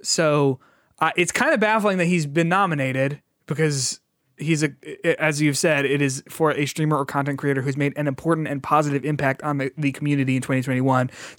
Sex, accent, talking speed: male, American, 195 wpm